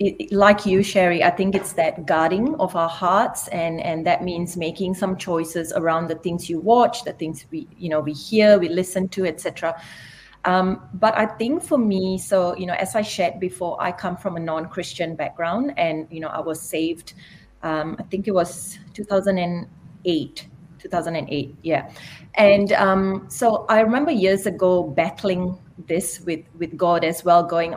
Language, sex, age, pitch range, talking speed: English, female, 30-49, 165-200 Hz, 175 wpm